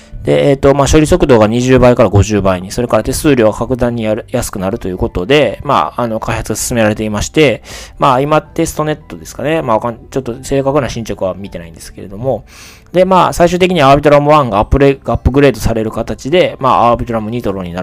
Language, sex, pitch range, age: Japanese, male, 100-135 Hz, 20-39